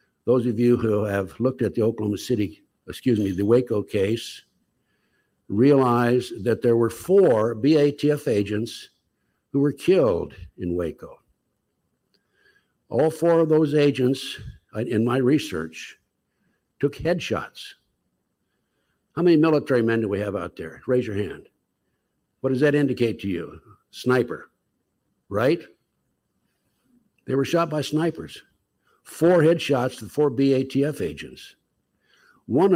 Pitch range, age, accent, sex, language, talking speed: 110-150 Hz, 60-79, American, male, English, 130 wpm